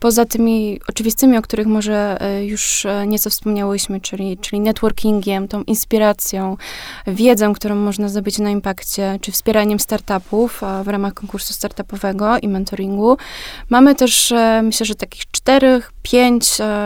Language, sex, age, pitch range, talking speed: Polish, female, 20-39, 205-225 Hz, 130 wpm